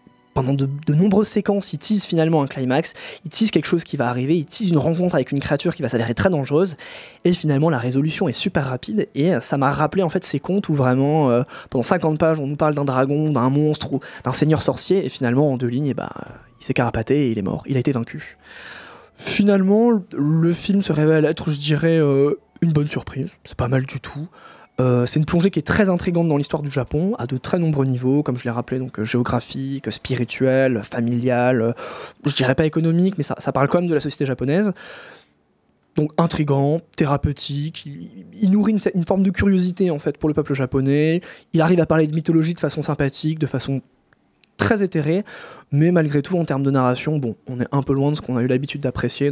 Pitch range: 130-165 Hz